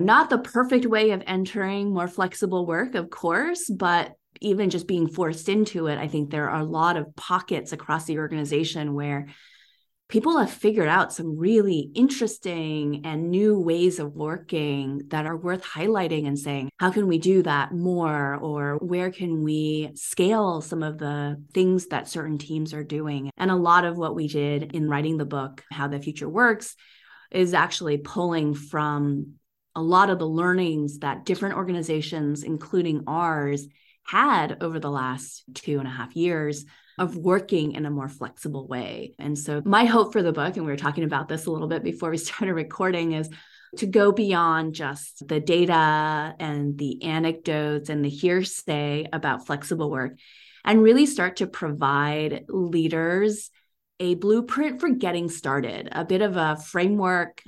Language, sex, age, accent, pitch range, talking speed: English, female, 20-39, American, 145-185 Hz, 170 wpm